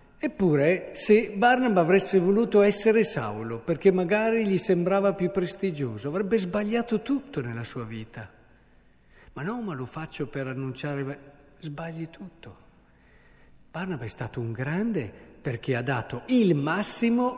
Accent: native